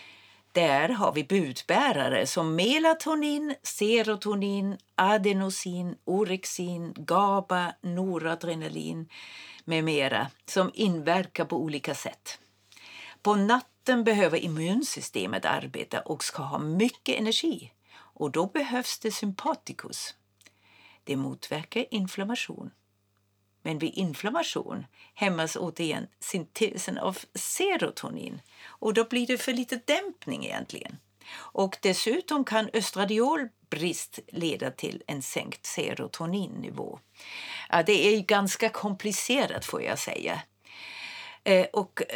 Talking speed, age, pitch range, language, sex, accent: 100 wpm, 50-69, 165-230 Hz, Swedish, female, native